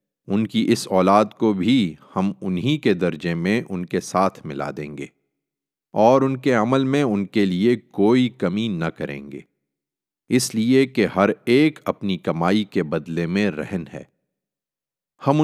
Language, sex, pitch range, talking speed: Urdu, male, 80-115 Hz, 165 wpm